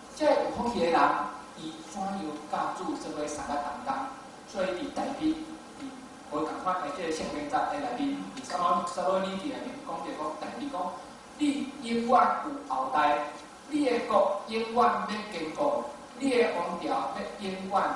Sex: male